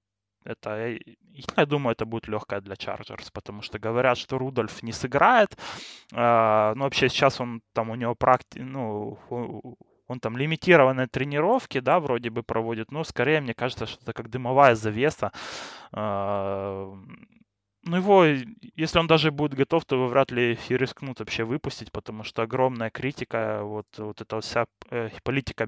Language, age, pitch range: Russian, 20-39, 105-130 Hz